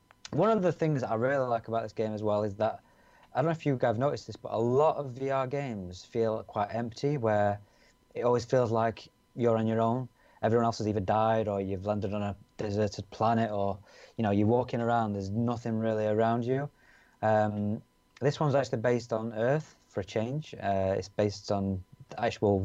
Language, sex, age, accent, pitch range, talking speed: English, male, 20-39, British, 105-120 Hz, 210 wpm